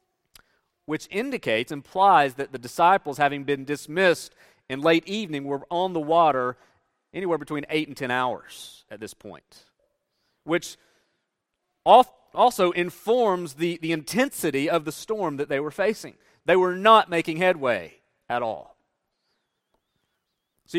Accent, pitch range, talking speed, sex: American, 135-180 Hz, 135 wpm, male